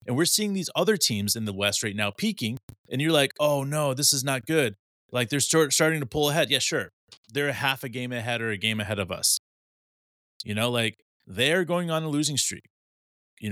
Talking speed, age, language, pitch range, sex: 230 wpm, 30-49, English, 110-155 Hz, male